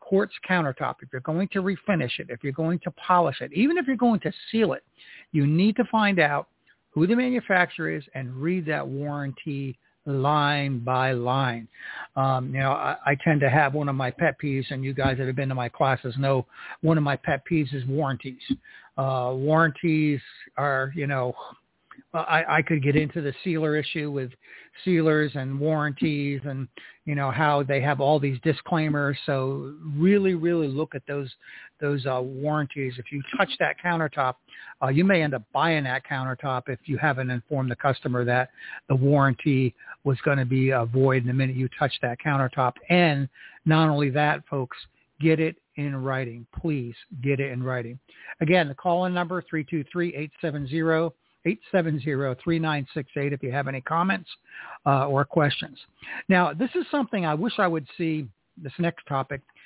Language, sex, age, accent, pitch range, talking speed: English, male, 60-79, American, 135-165 Hz, 180 wpm